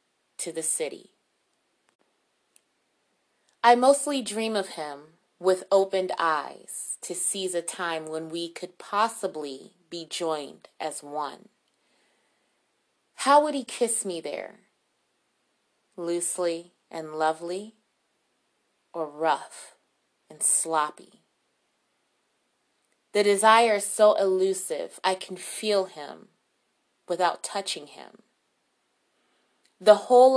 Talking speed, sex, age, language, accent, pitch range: 100 wpm, female, 30-49, English, American, 165-200 Hz